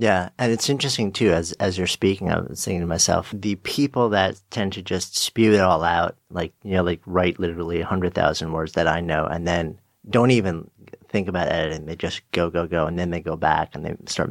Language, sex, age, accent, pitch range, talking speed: English, male, 40-59, American, 85-105 Hz, 230 wpm